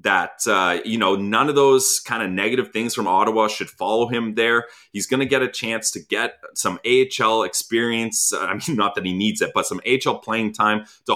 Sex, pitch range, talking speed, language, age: male, 110-140 Hz, 220 wpm, English, 30-49